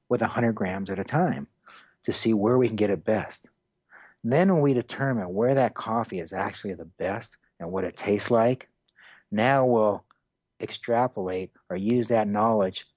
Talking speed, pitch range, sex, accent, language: 175 wpm, 95-120 Hz, male, American, English